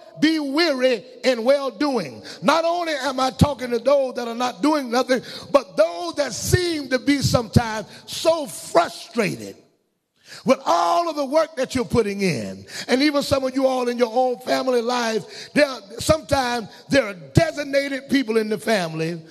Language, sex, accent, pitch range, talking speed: English, male, American, 240-290 Hz, 165 wpm